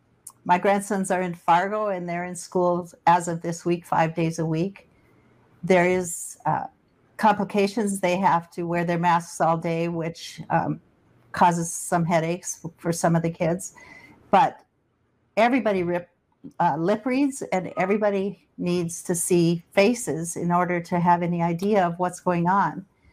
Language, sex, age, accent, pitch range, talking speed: English, female, 50-69, American, 175-205 Hz, 160 wpm